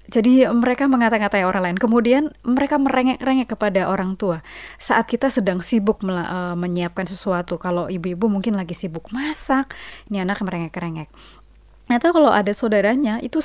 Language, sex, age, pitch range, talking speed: Indonesian, female, 20-39, 180-240 Hz, 145 wpm